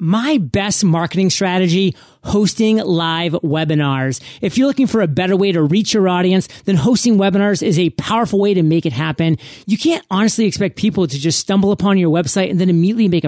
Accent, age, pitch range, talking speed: American, 30-49, 165-205 Hz, 200 wpm